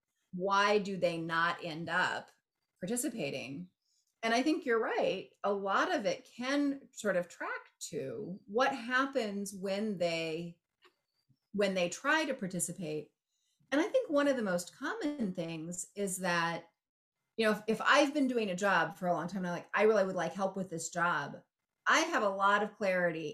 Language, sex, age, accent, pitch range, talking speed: English, female, 30-49, American, 175-240 Hz, 180 wpm